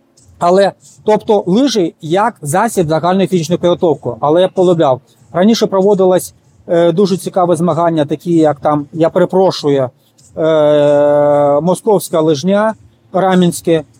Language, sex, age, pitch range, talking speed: Ukrainian, male, 30-49, 145-195 Hz, 105 wpm